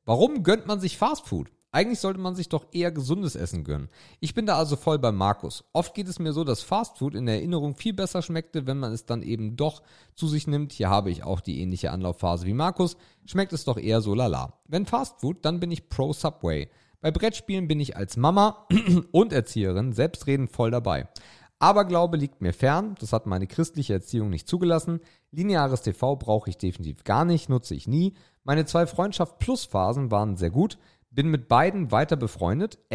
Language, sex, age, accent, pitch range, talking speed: German, male, 40-59, German, 105-170 Hz, 200 wpm